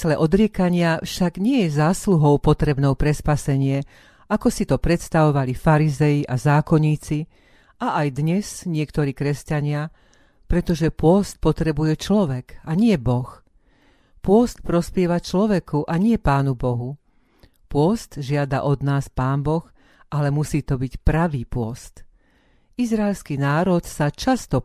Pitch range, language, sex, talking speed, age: 140-175 Hz, Slovak, female, 120 wpm, 40-59